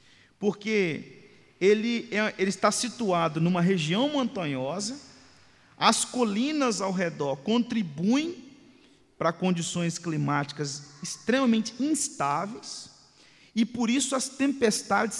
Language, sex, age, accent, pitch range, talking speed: Portuguese, male, 40-59, Brazilian, 145-210 Hz, 90 wpm